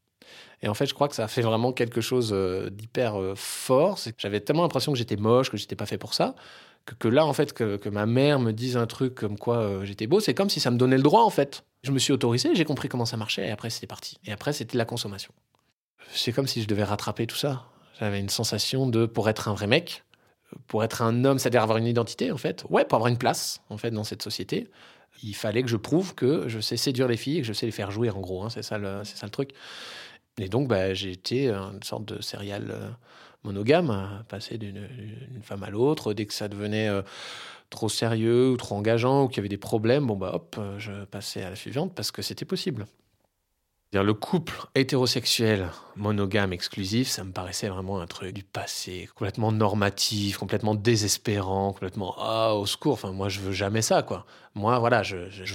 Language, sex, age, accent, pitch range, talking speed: French, male, 20-39, French, 100-125 Hz, 235 wpm